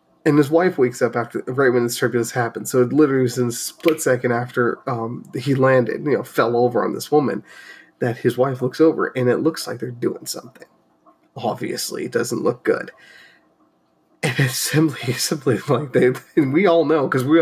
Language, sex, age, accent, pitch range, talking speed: English, male, 30-49, American, 125-155 Hz, 205 wpm